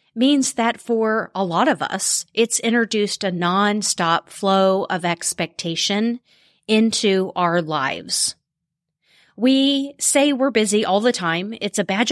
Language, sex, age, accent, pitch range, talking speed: English, female, 30-49, American, 190-265 Hz, 135 wpm